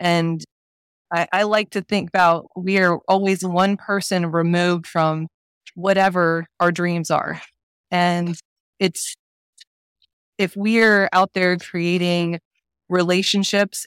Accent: American